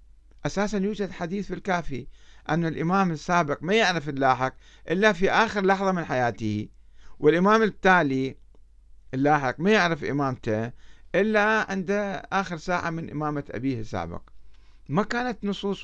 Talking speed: 130 wpm